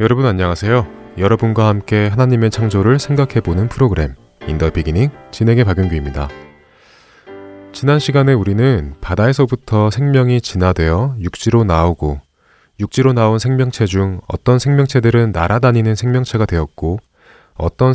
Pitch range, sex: 85-120 Hz, male